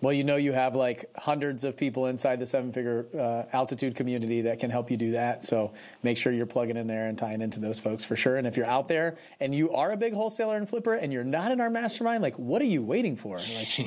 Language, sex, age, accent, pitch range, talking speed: English, male, 30-49, American, 110-130 Hz, 270 wpm